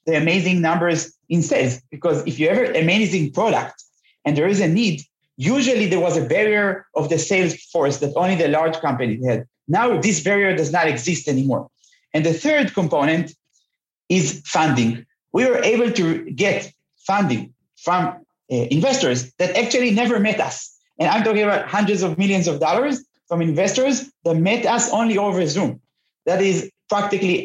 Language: English